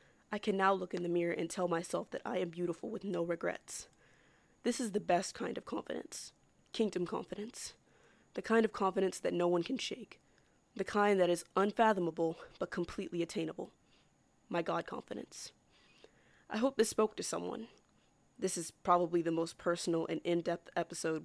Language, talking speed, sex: English, 170 wpm, female